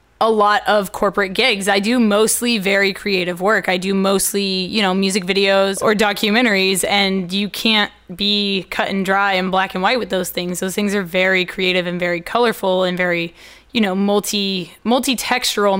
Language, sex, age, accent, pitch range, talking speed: English, female, 20-39, American, 195-230 Hz, 180 wpm